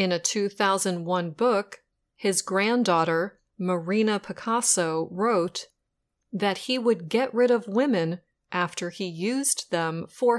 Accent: American